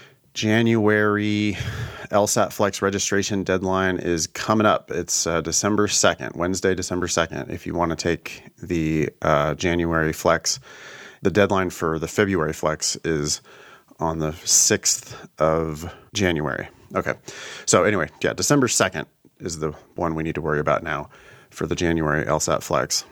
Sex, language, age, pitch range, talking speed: male, English, 30-49, 85-105 Hz, 145 wpm